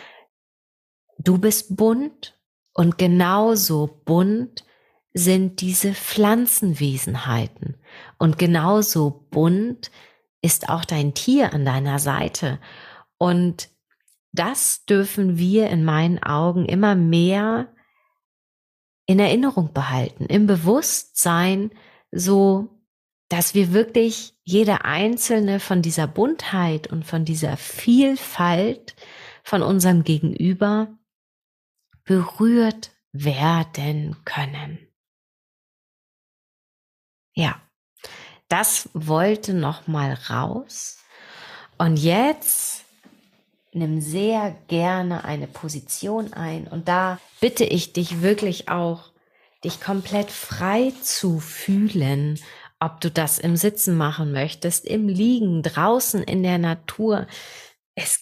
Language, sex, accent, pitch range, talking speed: German, female, German, 160-215 Hz, 95 wpm